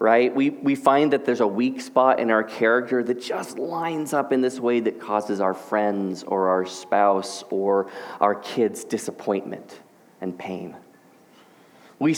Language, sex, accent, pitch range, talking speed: English, male, American, 105-135 Hz, 165 wpm